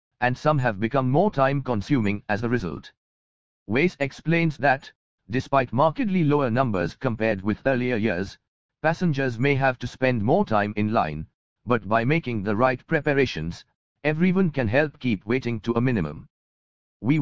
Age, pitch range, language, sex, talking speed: 50-69, 105-140 Hz, English, male, 155 wpm